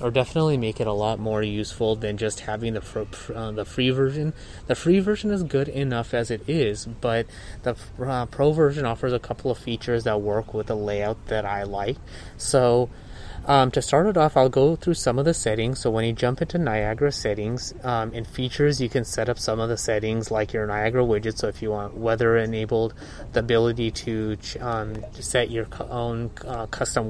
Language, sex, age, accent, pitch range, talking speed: English, male, 20-39, American, 105-125 Hz, 215 wpm